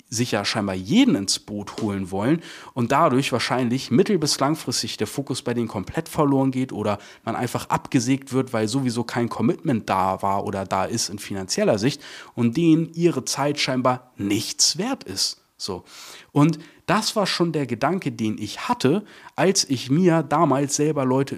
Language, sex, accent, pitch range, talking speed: German, male, German, 110-145 Hz, 175 wpm